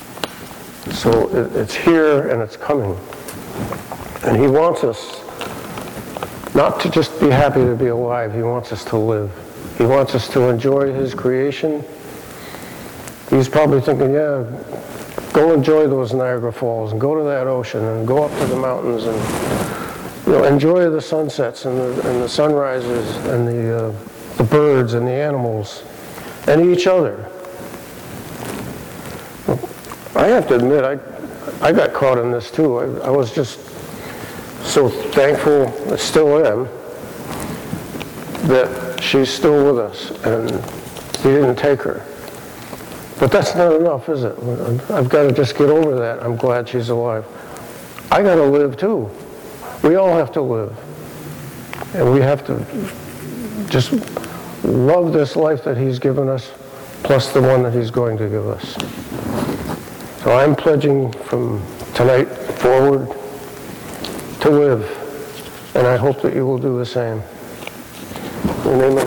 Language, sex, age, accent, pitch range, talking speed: English, male, 60-79, American, 120-145 Hz, 150 wpm